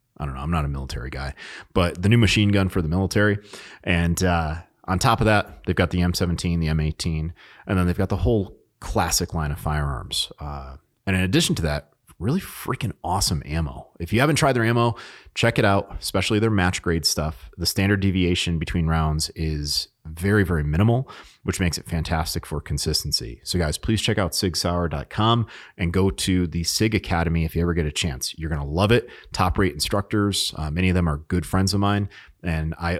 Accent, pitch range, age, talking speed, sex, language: American, 80-100 Hz, 30-49, 205 wpm, male, English